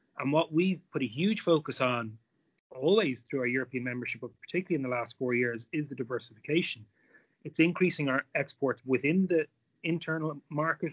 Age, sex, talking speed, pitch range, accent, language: 30-49, male, 175 wpm, 125-150 Hz, Irish, English